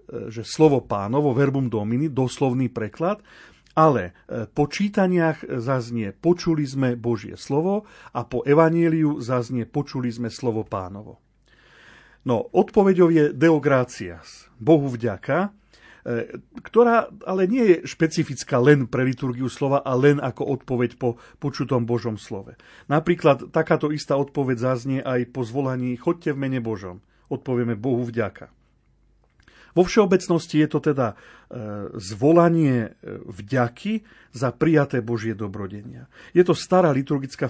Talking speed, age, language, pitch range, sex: 120 wpm, 40-59, Slovak, 120-155 Hz, male